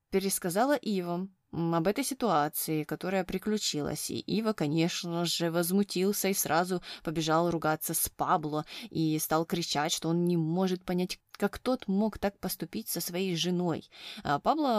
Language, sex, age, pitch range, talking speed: Russian, female, 20-39, 160-205 Hz, 145 wpm